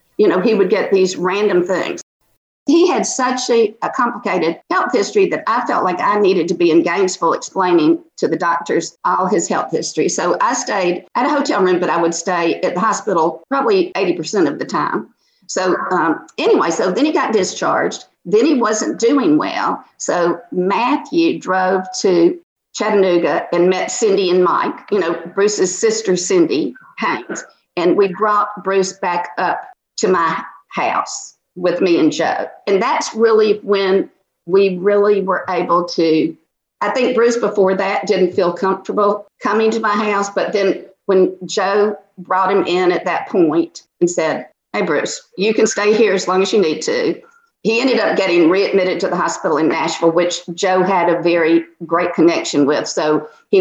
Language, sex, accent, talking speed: English, female, American, 180 wpm